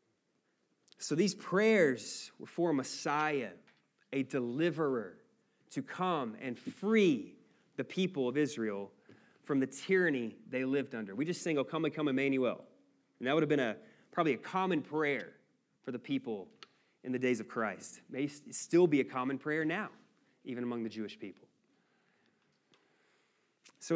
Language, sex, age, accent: English, male, 20-39, American